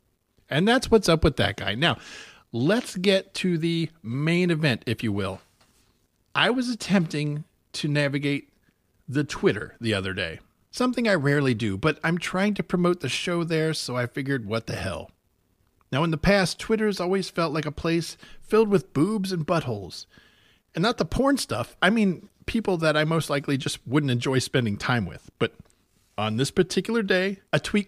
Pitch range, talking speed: 115-170 Hz, 185 wpm